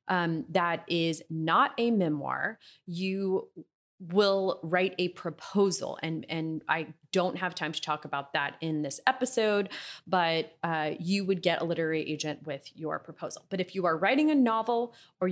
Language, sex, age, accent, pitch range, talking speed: English, female, 30-49, American, 160-200 Hz, 170 wpm